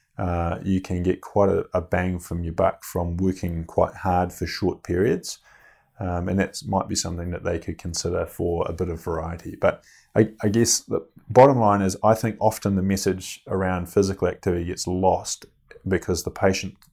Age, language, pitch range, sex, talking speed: 30-49, English, 85-95 Hz, male, 190 wpm